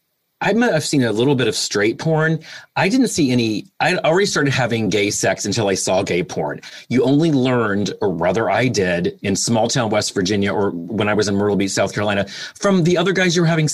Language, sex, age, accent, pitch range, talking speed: English, male, 30-49, American, 100-155 Hz, 230 wpm